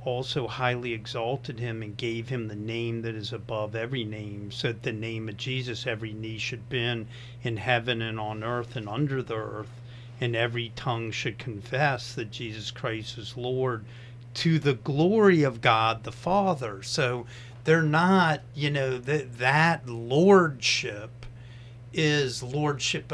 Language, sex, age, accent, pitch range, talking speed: English, male, 40-59, American, 115-135 Hz, 155 wpm